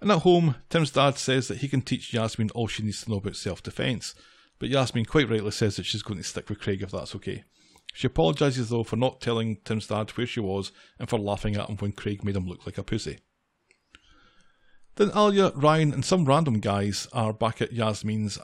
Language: English